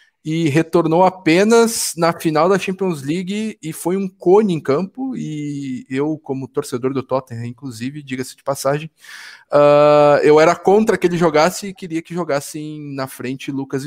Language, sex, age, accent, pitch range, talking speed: Portuguese, male, 20-39, Brazilian, 135-175 Hz, 160 wpm